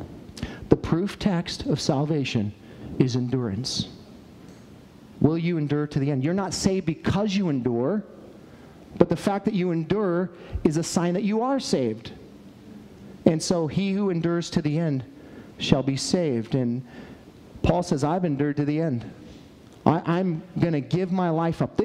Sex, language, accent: male, English, American